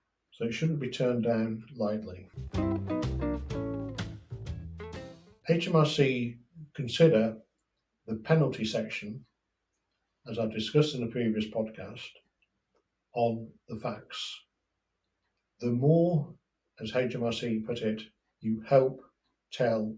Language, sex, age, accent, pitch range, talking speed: English, male, 50-69, British, 110-130 Hz, 95 wpm